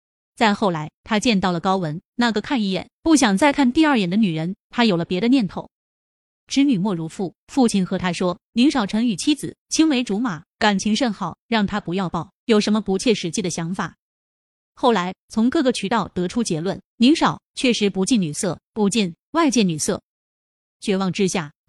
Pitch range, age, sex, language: 180-240 Hz, 20-39, female, Chinese